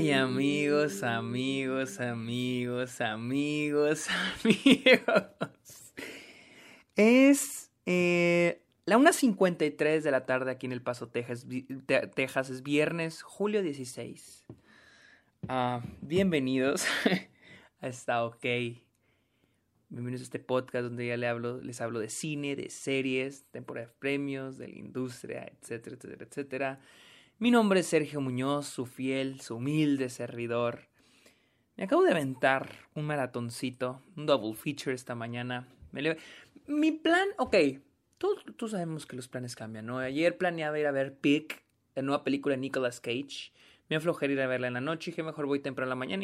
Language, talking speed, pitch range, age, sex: Spanish, 145 wpm, 125-165 Hz, 20-39, male